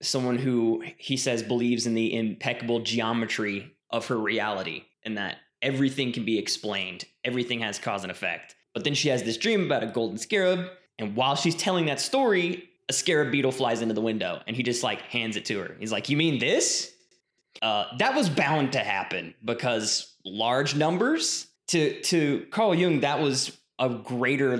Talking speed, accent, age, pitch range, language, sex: 185 wpm, American, 20-39, 115-140 Hz, English, male